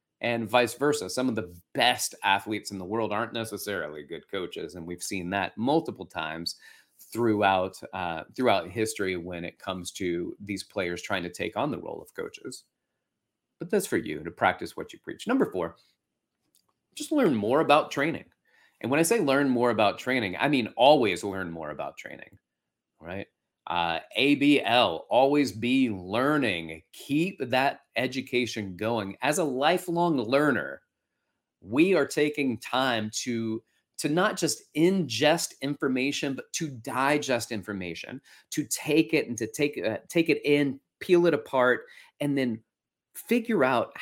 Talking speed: 155 wpm